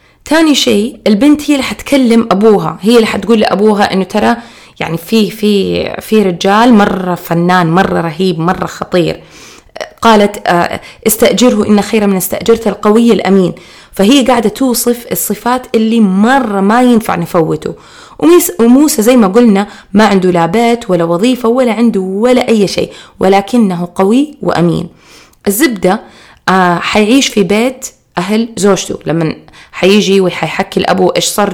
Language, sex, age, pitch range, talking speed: Arabic, female, 20-39, 185-230 Hz, 130 wpm